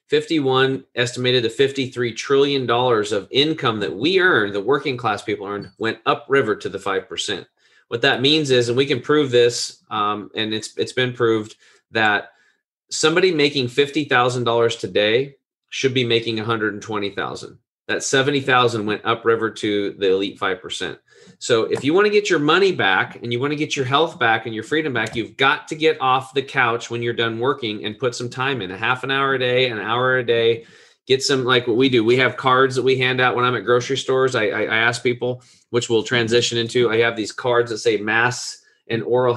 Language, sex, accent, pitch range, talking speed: English, male, American, 115-140 Hz, 205 wpm